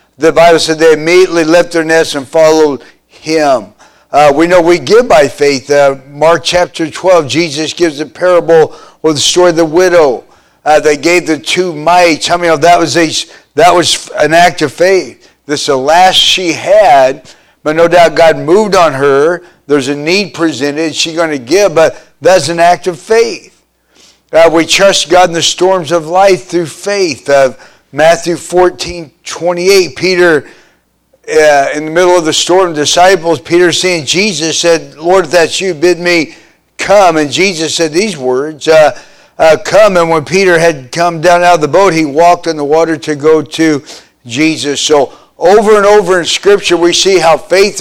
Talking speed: 190 wpm